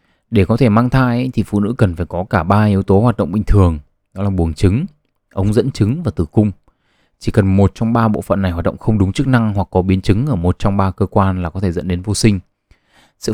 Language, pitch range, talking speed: Vietnamese, 90-115 Hz, 275 wpm